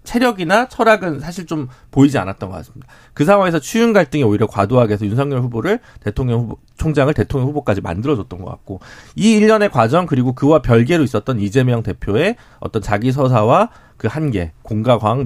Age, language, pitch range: 40-59, Korean, 115-170 Hz